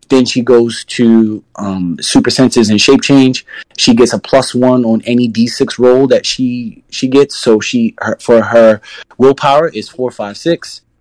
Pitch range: 110-130 Hz